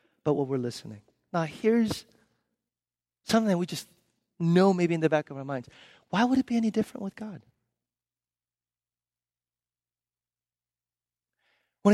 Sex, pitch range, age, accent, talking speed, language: male, 130-180 Hz, 30-49, American, 135 wpm, English